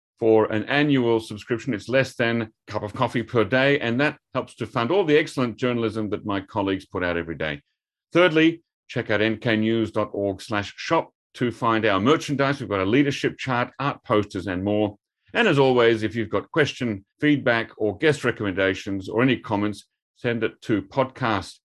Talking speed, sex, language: 180 wpm, male, English